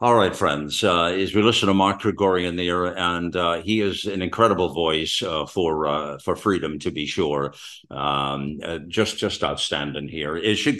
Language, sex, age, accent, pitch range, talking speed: English, male, 50-69, American, 85-105 Hz, 195 wpm